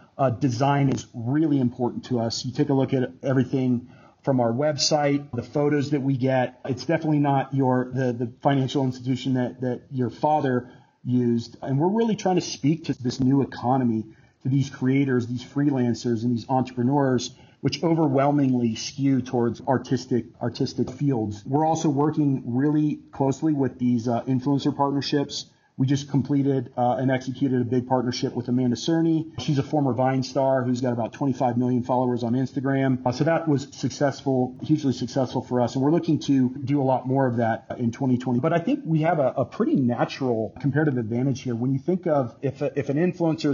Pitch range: 125-140 Hz